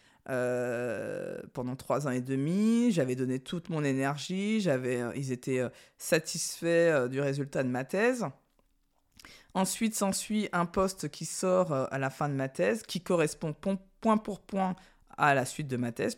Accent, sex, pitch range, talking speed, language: French, female, 135-175 Hz, 155 wpm, French